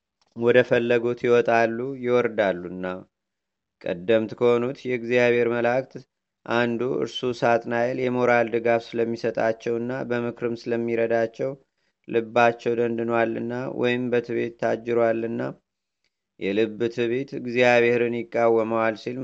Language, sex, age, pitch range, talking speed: Amharic, male, 30-49, 115-120 Hz, 80 wpm